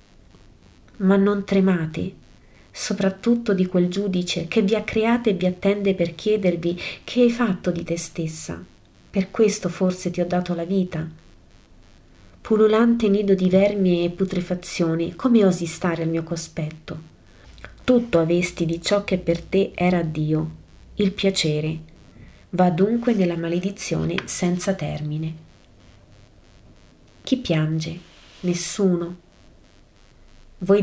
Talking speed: 125 wpm